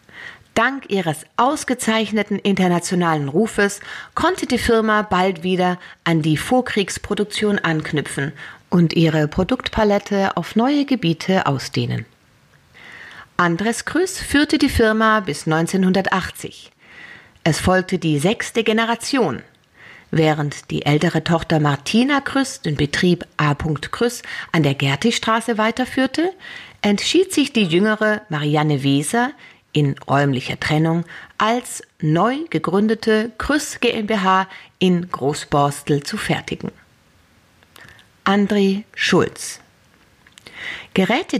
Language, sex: German, female